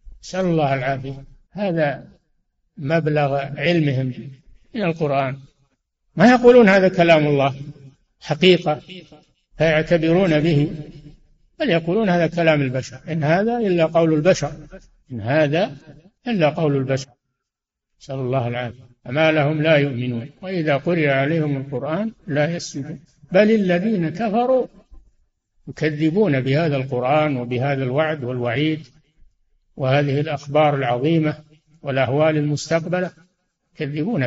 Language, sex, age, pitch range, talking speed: Arabic, male, 60-79, 140-170 Hz, 105 wpm